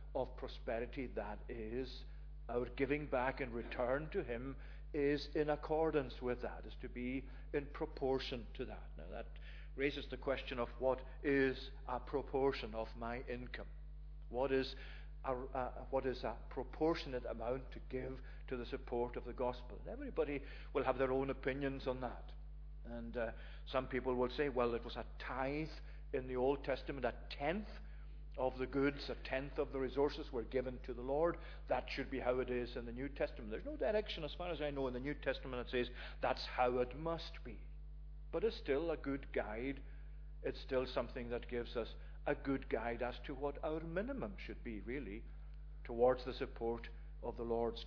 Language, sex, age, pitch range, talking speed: English, male, 50-69, 120-145 Hz, 185 wpm